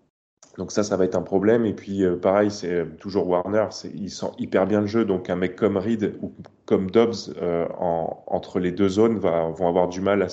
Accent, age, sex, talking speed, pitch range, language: French, 20-39, male, 230 wpm, 90-105 Hz, French